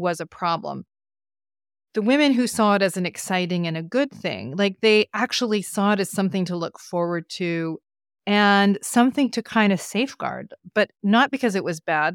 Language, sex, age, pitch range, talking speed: English, female, 30-49, 170-210 Hz, 190 wpm